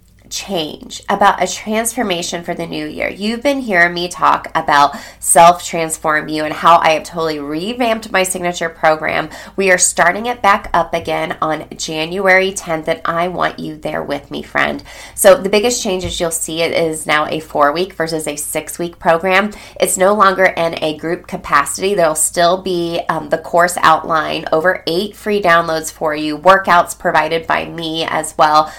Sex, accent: female, American